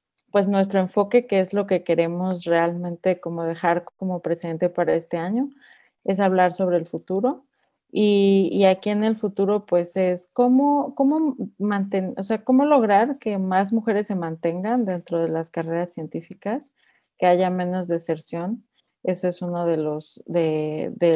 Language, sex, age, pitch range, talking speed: Spanish, female, 30-49, 170-200 Hz, 160 wpm